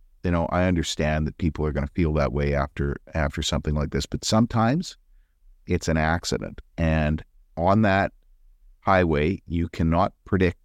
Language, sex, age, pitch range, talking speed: English, male, 50-69, 75-95 Hz, 165 wpm